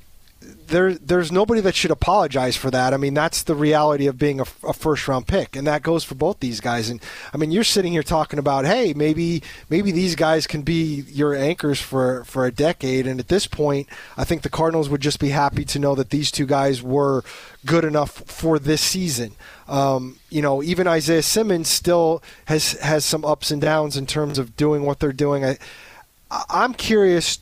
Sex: male